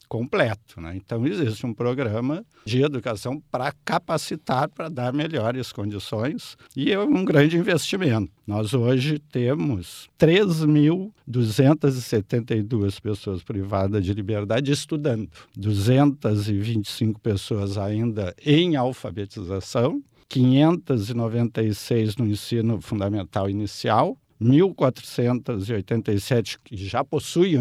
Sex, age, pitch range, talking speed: male, 60-79, 105-140 Hz, 90 wpm